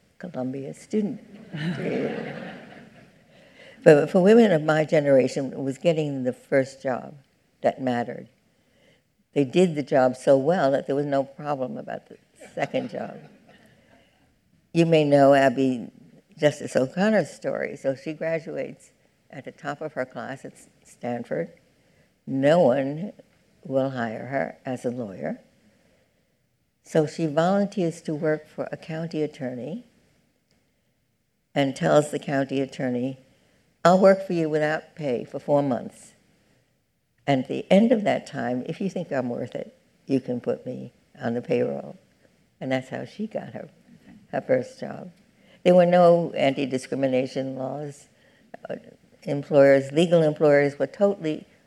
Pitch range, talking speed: 135-175 Hz, 140 wpm